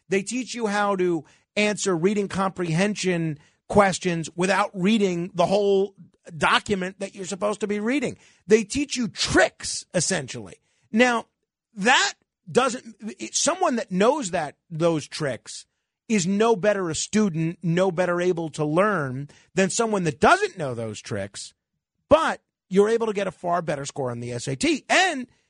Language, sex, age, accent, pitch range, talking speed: English, male, 40-59, American, 160-210 Hz, 150 wpm